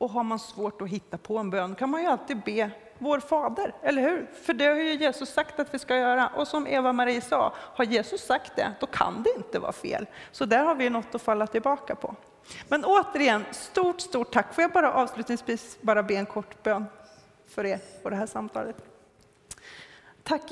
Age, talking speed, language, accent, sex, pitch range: 40-59, 215 wpm, Swedish, native, female, 205-250 Hz